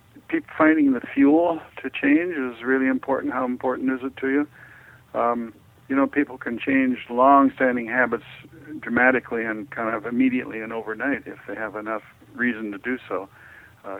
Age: 60-79